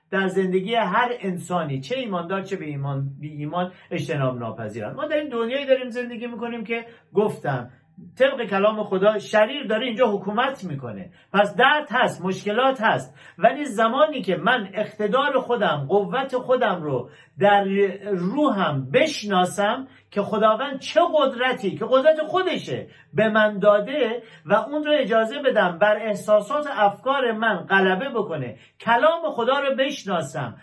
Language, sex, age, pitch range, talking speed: Persian, male, 50-69, 185-260 Hz, 140 wpm